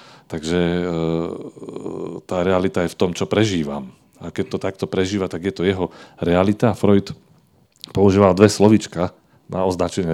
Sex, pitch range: male, 90-110 Hz